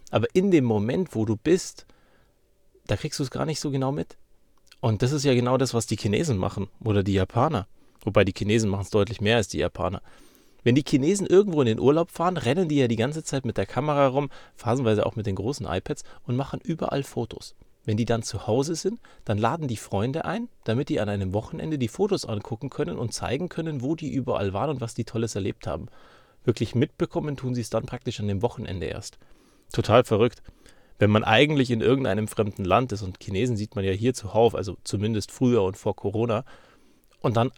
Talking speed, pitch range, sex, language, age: 215 wpm, 110-140 Hz, male, German, 40-59